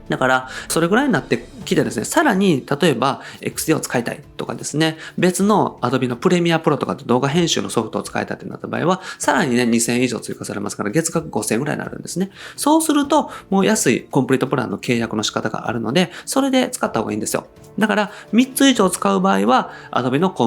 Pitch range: 125-205 Hz